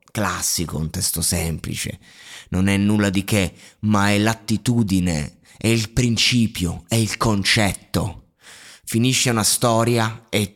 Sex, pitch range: male, 95-130 Hz